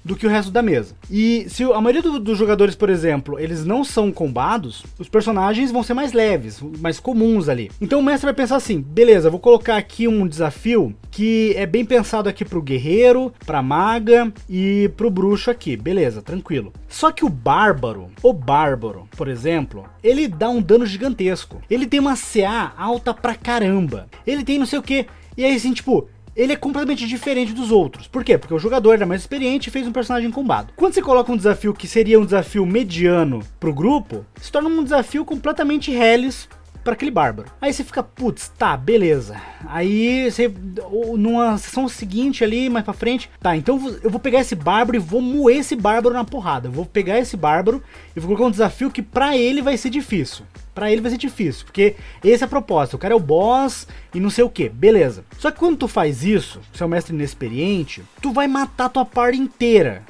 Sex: male